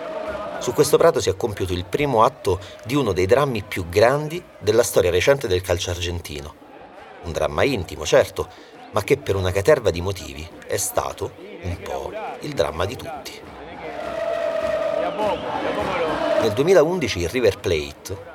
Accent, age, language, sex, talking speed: native, 30-49, Italian, male, 145 wpm